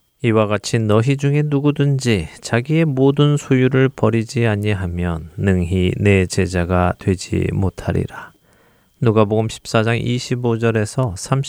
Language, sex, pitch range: Korean, male, 100-130 Hz